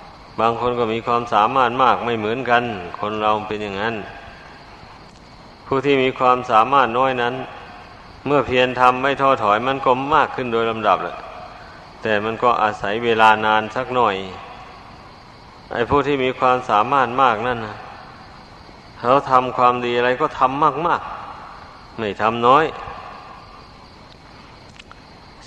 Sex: male